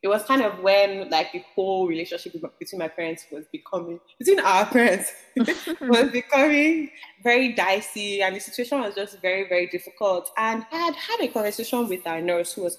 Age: 20-39